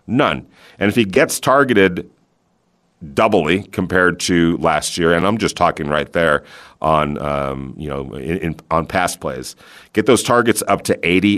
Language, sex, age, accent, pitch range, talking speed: English, male, 40-59, American, 80-100 Hz, 160 wpm